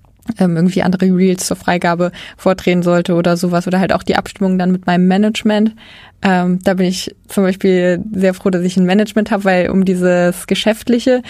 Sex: female